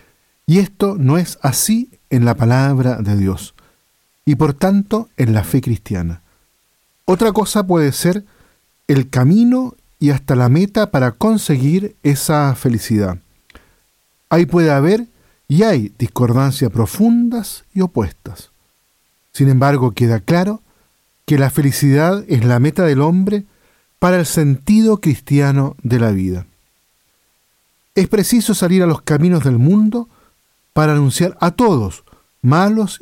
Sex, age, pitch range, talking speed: male, 50-69, 125-185 Hz, 130 wpm